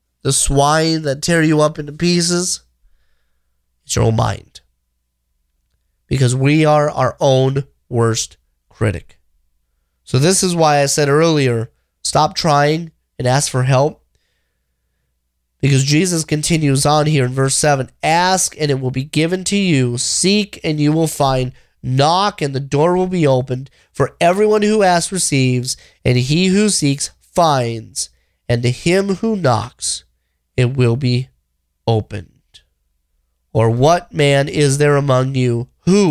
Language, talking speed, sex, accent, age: English, 145 wpm, male, American, 30-49